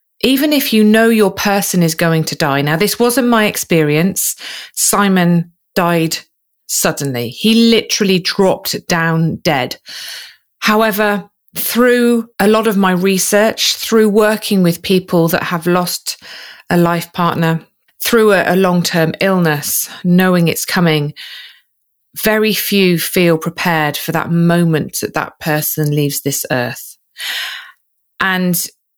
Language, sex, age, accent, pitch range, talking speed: English, female, 30-49, British, 165-215 Hz, 130 wpm